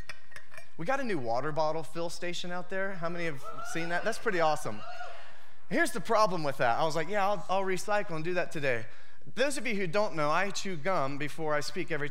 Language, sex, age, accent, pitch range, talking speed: English, male, 30-49, American, 155-205 Hz, 235 wpm